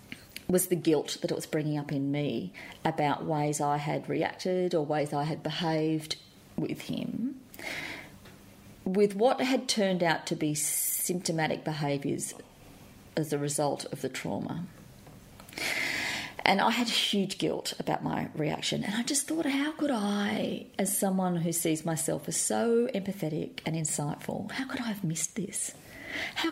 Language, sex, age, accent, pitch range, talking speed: English, female, 40-59, Australian, 155-210 Hz, 155 wpm